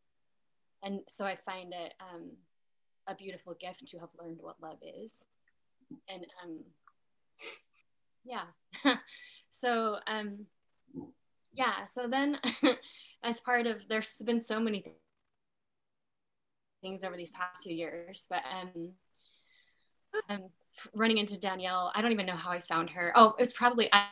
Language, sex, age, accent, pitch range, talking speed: English, female, 10-29, American, 180-235 Hz, 135 wpm